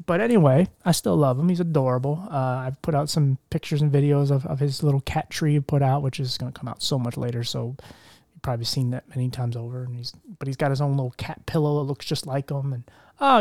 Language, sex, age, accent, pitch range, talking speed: English, male, 20-39, American, 130-170 Hz, 260 wpm